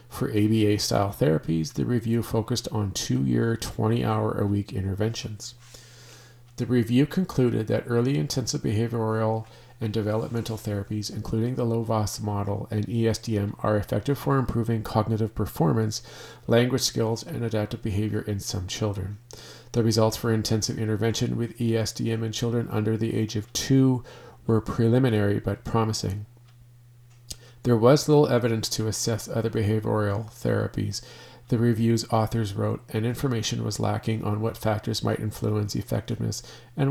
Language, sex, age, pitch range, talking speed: English, male, 40-59, 110-120 Hz, 135 wpm